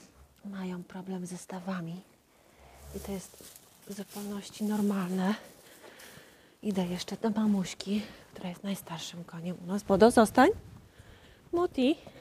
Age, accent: 30-49, native